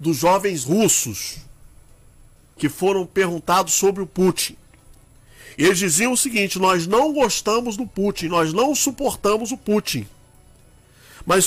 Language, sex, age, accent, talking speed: Portuguese, male, 50-69, Brazilian, 125 wpm